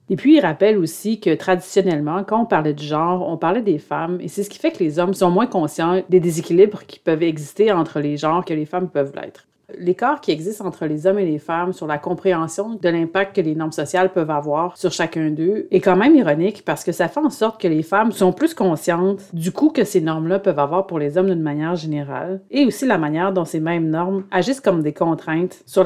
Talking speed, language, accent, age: 245 wpm, French, Canadian, 40-59